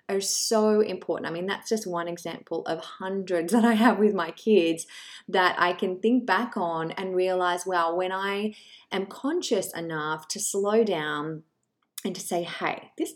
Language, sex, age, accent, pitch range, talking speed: English, female, 20-39, Australian, 170-220 Hz, 180 wpm